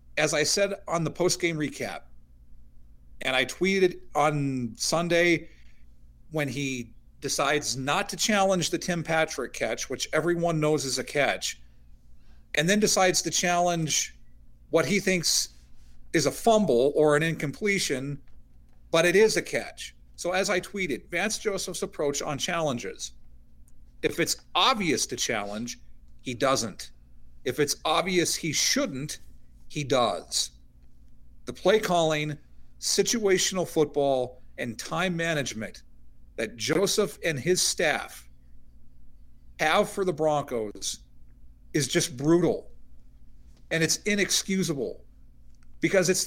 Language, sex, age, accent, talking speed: English, male, 40-59, American, 125 wpm